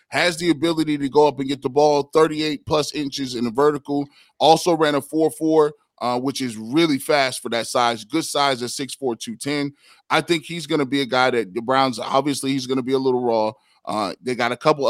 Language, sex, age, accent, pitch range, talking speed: English, male, 20-39, American, 125-150 Hz, 220 wpm